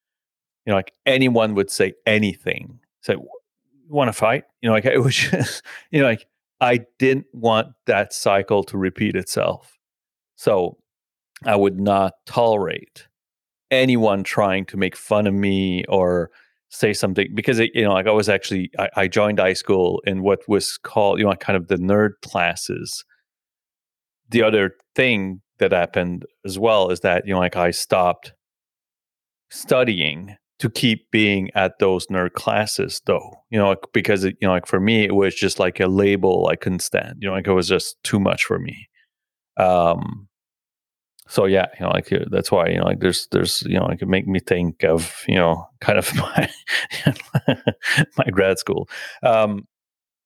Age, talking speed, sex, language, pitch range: 30-49, 180 wpm, male, English, 95-115 Hz